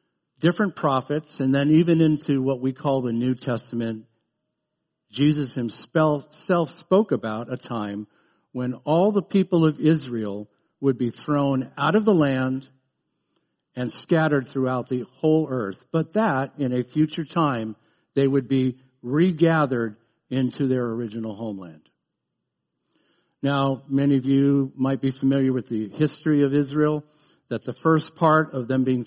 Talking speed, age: 145 wpm, 50-69